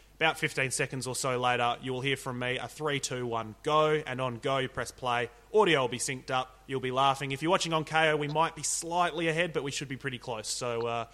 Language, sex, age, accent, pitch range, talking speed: English, male, 20-39, Australian, 125-165 Hz, 240 wpm